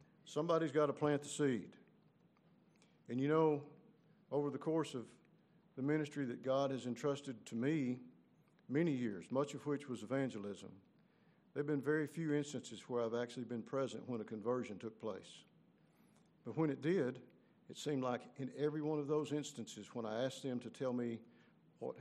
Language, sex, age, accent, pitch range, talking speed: English, male, 50-69, American, 120-150 Hz, 175 wpm